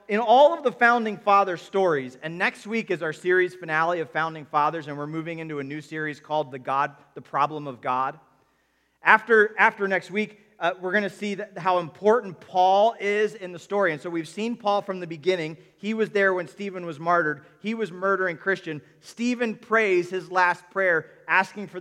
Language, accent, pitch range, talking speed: English, American, 160-205 Hz, 200 wpm